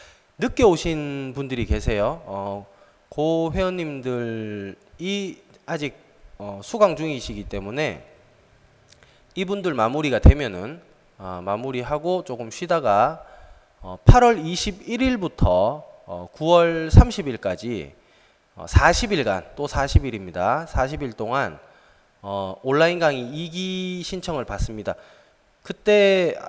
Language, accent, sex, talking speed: English, Korean, male, 85 wpm